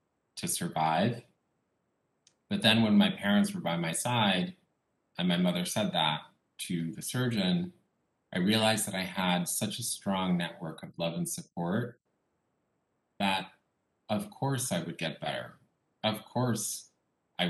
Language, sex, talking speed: English, male, 145 wpm